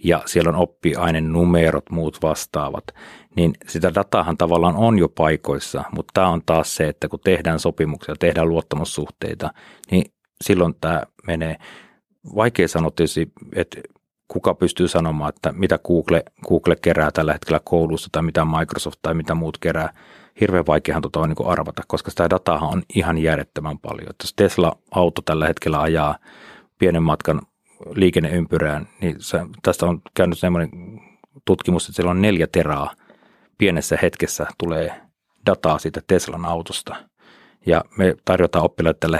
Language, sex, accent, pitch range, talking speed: Finnish, male, native, 80-90 Hz, 145 wpm